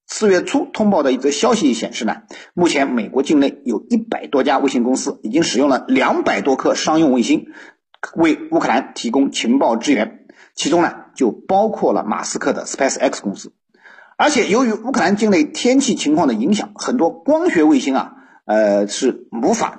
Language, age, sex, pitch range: Chinese, 50-69, male, 190-295 Hz